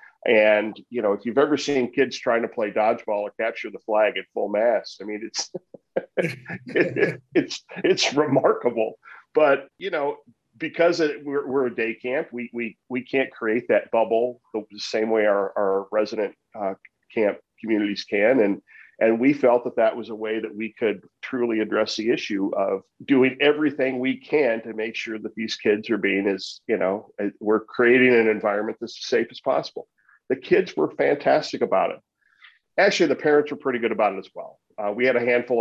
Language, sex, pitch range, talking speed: English, male, 105-125 Hz, 190 wpm